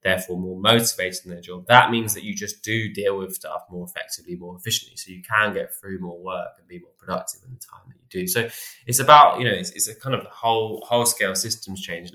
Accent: British